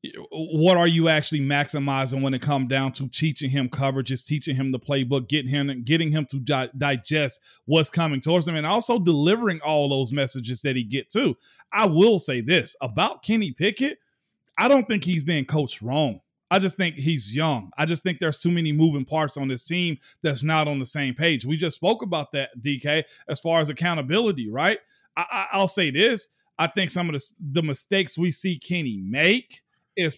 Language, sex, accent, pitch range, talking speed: English, male, American, 145-195 Hz, 195 wpm